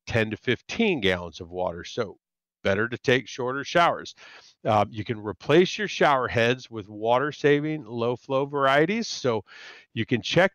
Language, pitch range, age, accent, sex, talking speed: English, 105-140 Hz, 50-69, American, male, 165 wpm